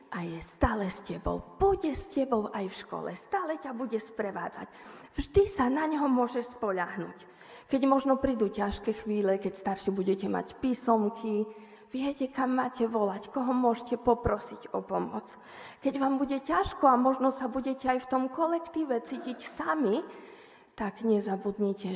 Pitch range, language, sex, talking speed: 200-255 Hz, Slovak, female, 155 wpm